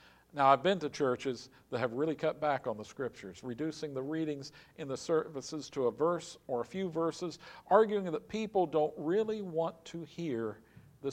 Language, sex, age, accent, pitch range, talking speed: English, male, 50-69, American, 115-160 Hz, 190 wpm